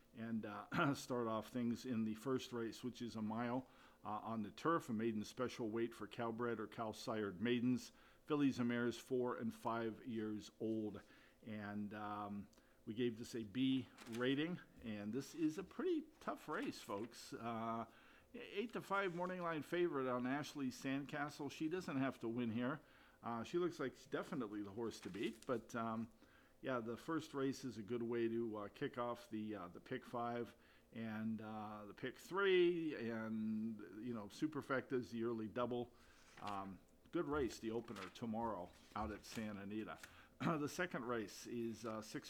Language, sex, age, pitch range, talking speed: English, male, 50-69, 110-130 Hz, 180 wpm